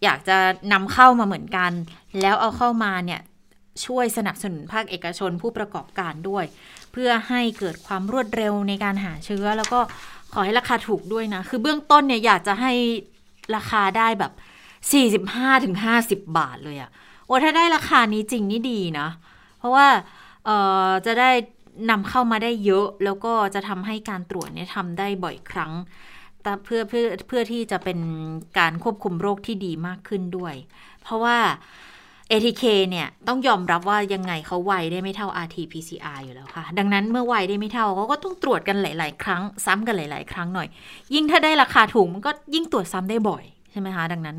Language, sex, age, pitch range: Thai, female, 20-39, 185-235 Hz